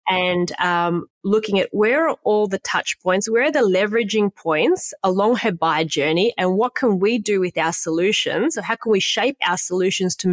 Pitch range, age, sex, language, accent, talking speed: 175-215 Hz, 30-49, female, English, Australian, 205 wpm